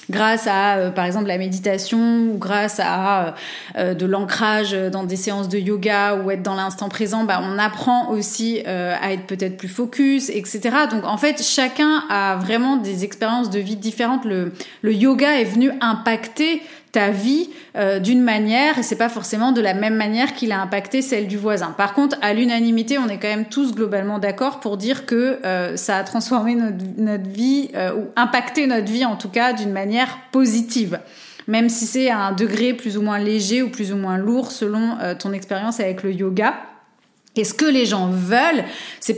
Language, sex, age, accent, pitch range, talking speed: French, female, 30-49, French, 200-250 Hz, 200 wpm